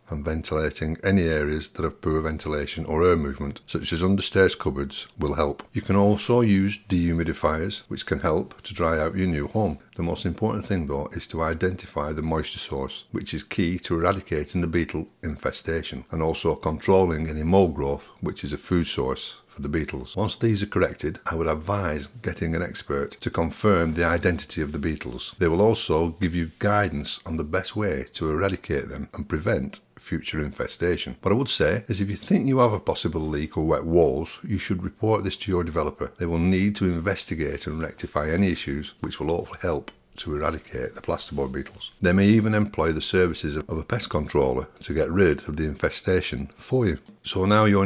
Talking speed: 200 wpm